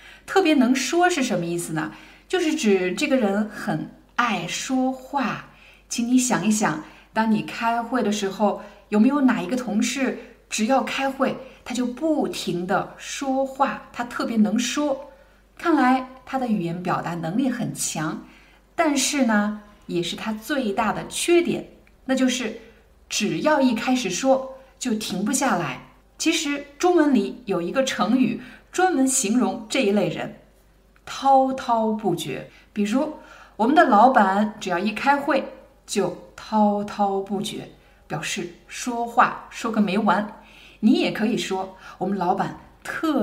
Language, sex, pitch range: Chinese, female, 205-270 Hz